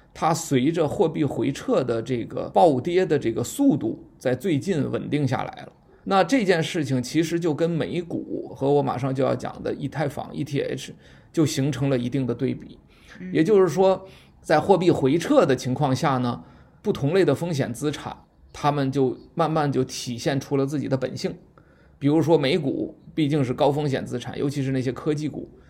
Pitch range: 130-165 Hz